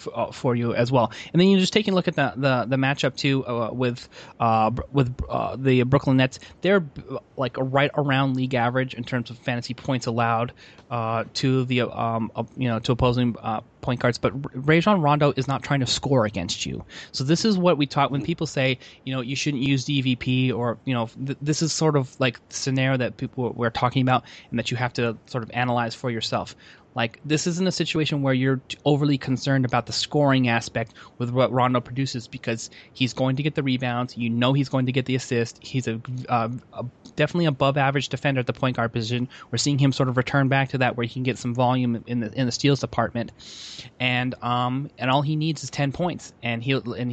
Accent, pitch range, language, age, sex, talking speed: American, 120-140 Hz, English, 20-39, male, 225 wpm